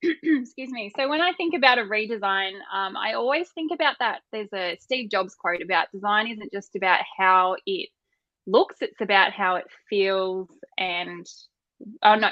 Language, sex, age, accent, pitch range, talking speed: English, female, 10-29, Australian, 185-250 Hz, 175 wpm